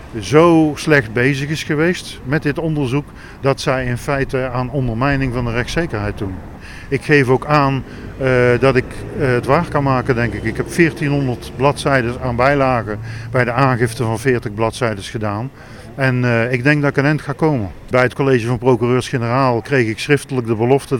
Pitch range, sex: 115-135 Hz, male